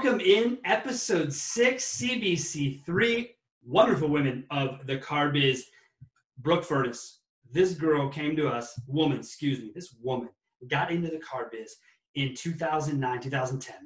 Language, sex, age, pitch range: English, male, 30-49, 145-195 Hz